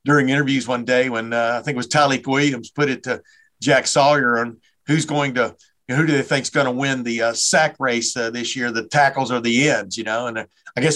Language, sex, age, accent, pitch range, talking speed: English, male, 50-69, American, 125-165 Hz, 270 wpm